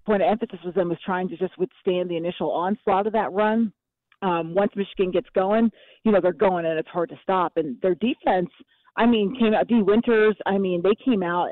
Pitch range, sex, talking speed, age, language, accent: 170-200 Hz, female, 230 wpm, 40-59, English, American